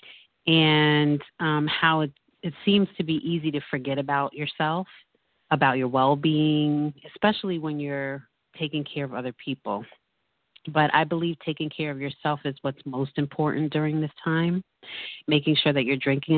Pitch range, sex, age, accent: 140-155 Hz, female, 30-49, American